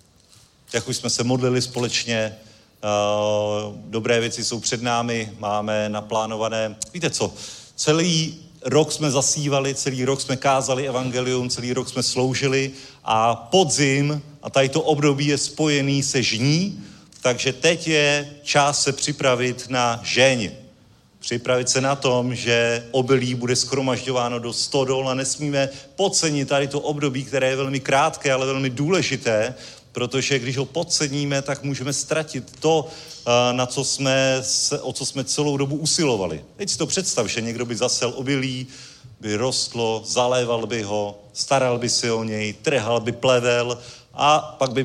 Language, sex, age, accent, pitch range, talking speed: Czech, male, 40-59, native, 120-145 Hz, 150 wpm